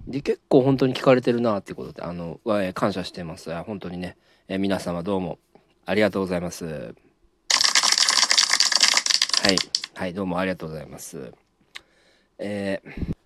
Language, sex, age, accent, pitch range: Japanese, male, 40-59, native, 90-140 Hz